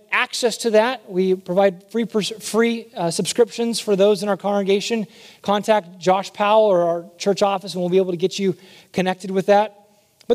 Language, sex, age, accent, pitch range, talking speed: English, male, 30-49, American, 190-225 Hz, 185 wpm